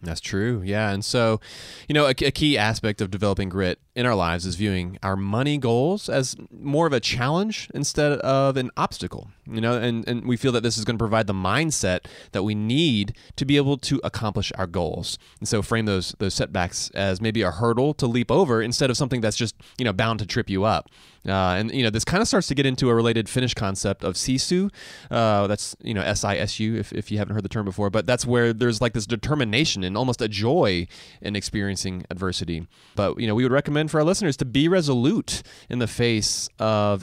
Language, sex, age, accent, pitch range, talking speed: English, male, 30-49, American, 100-130 Hz, 230 wpm